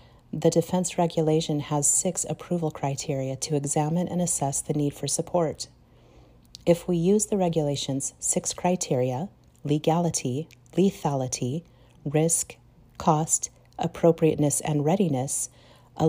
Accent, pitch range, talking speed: American, 140-175 Hz, 110 wpm